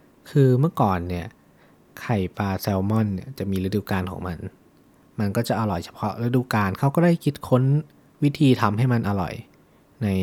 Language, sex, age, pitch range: Thai, male, 20-39, 95-125 Hz